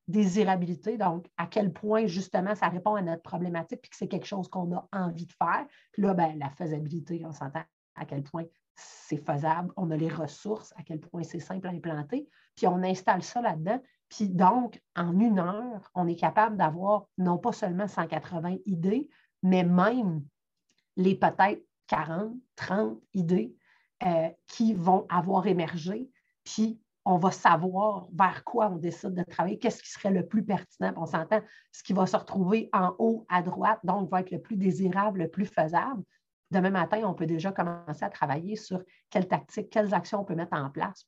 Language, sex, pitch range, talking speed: French, female, 170-210 Hz, 190 wpm